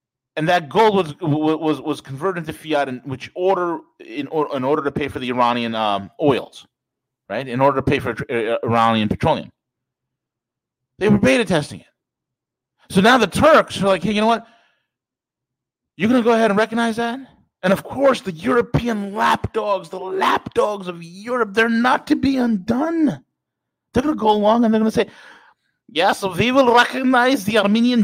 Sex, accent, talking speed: male, American, 180 wpm